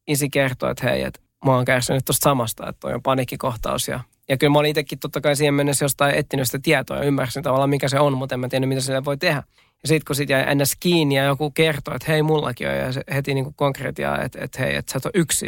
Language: Finnish